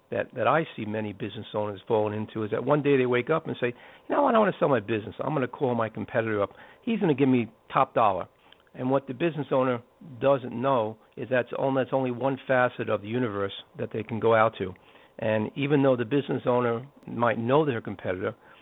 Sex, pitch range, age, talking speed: male, 110-135 Hz, 60-79, 240 wpm